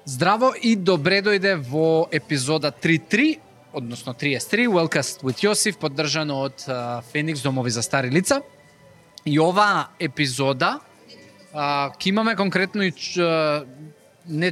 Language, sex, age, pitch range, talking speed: English, male, 20-39, 140-190 Hz, 110 wpm